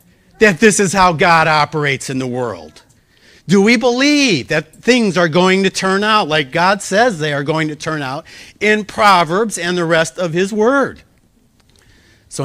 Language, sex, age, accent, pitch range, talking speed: English, male, 50-69, American, 125-180 Hz, 180 wpm